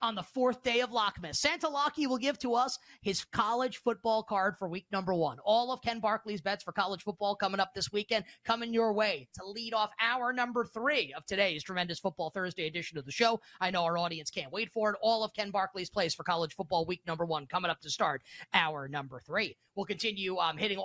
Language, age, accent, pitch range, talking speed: English, 20-39, American, 165-220 Hz, 230 wpm